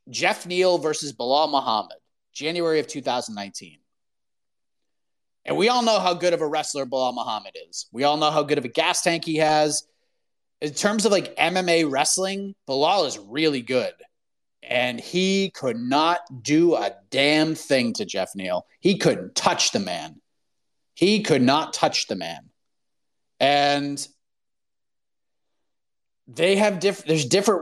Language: English